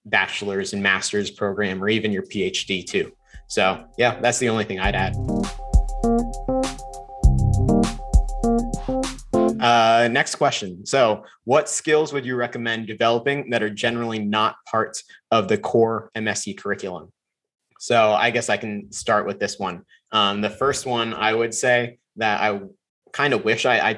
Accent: American